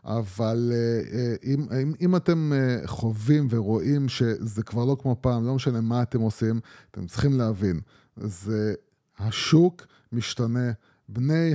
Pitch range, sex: 120-150 Hz, male